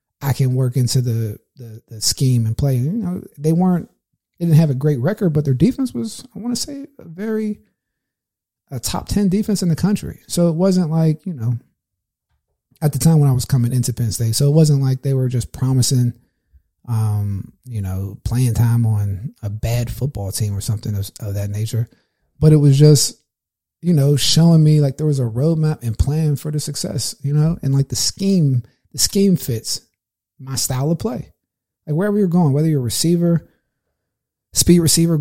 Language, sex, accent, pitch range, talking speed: English, male, American, 115-155 Hz, 200 wpm